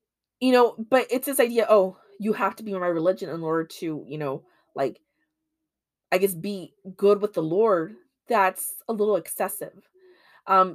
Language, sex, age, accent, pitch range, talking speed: English, female, 20-39, American, 160-210 Hz, 180 wpm